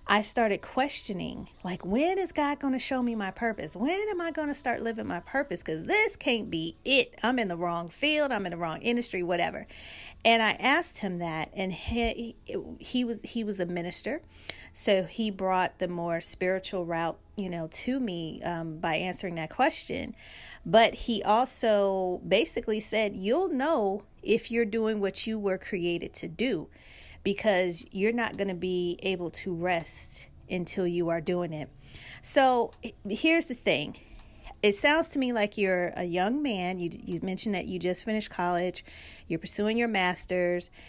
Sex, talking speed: female, 180 wpm